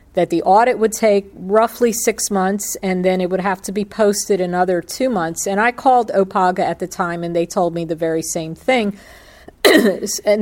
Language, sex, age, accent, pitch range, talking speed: English, female, 50-69, American, 180-215 Hz, 200 wpm